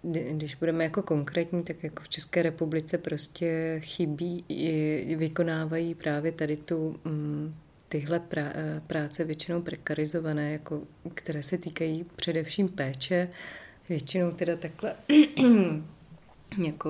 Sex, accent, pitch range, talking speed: female, native, 155-170 Hz, 110 wpm